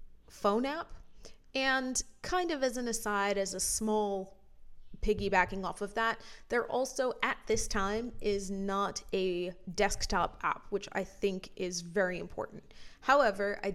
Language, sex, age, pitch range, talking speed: English, female, 20-39, 195-230 Hz, 145 wpm